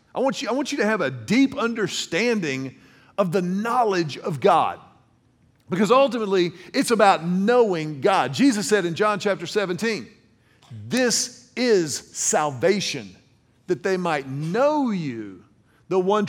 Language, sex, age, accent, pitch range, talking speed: English, male, 40-59, American, 165-230 Hz, 135 wpm